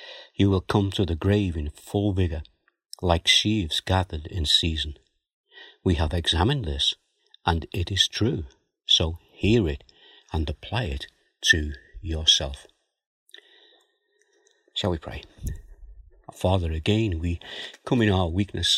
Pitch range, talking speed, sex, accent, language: 80-105 Hz, 130 wpm, male, British, English